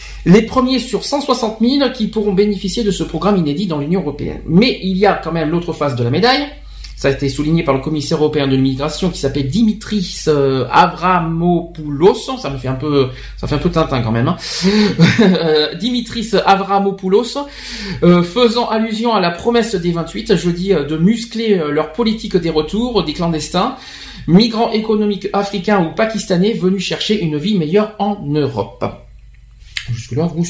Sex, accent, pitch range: male, French, 150-205 Hz